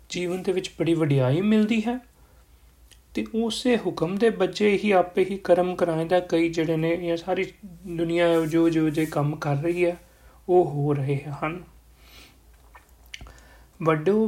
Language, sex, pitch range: Punjabi, male, 160-210 Hz